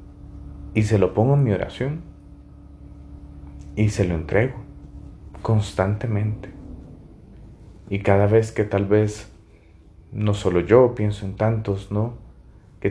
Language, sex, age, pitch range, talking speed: Spanish, male, 30-49, 90-105 Hz, 120 wpm